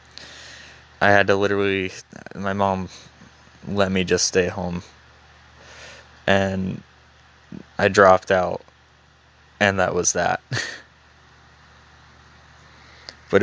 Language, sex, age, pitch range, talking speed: English, male, 20-39, 75-95 Hz, 90 wpm